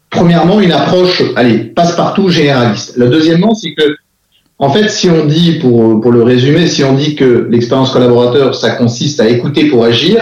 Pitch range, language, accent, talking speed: 120-170 Hz, French, French, 180 wpm